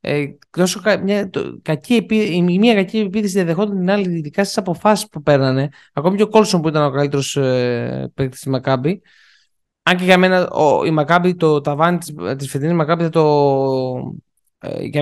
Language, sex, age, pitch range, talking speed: Greek, male, 20-39, 145-210 Hz, 165 wpm